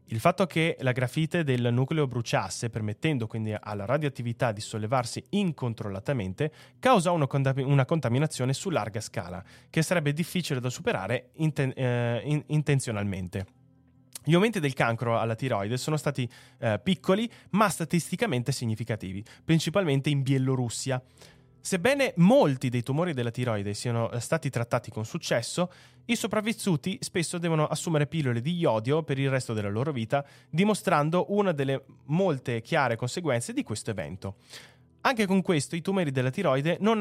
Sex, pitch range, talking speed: male, 120-160 Hz, 135 wpm